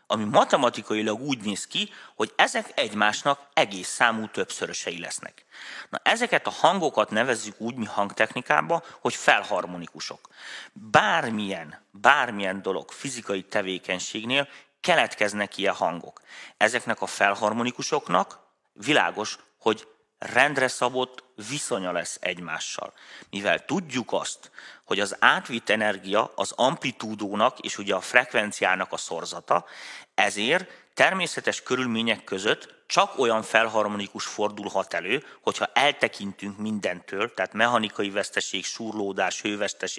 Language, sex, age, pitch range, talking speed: Hungarian, male, 30-49, 100-130 Hz, 105 wpm